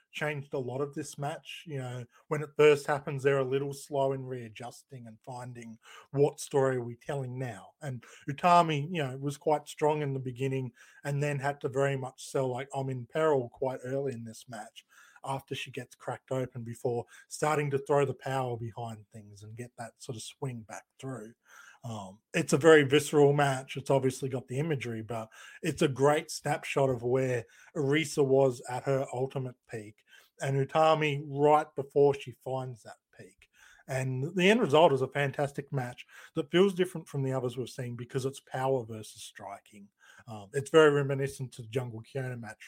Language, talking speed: English, 190 wpm